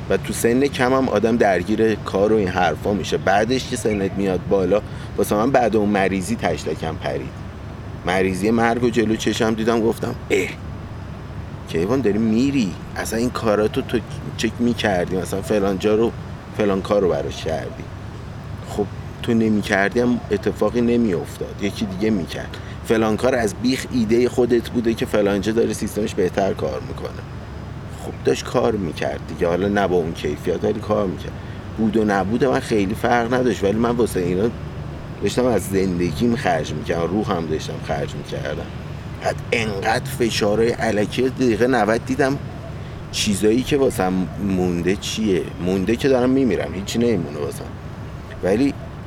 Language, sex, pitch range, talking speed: Persian, male, 95-120 Hz, 150 wpm